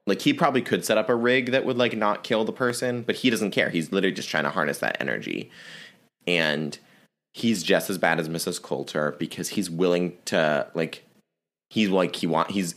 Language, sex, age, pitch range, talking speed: English, male, 20-39, 85-115 Hz, 210 wpm